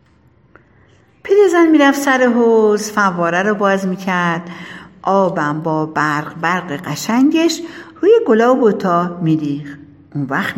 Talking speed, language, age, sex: 115 wpm, Persian, 60-79, female